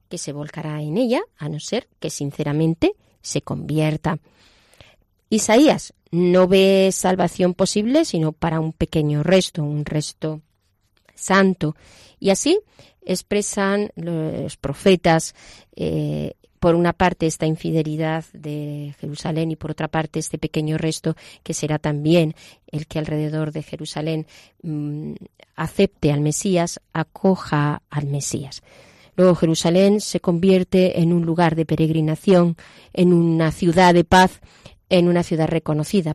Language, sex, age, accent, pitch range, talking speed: Spanish, female, 30-49, Spanish, 150-175 Hz, 130 wpm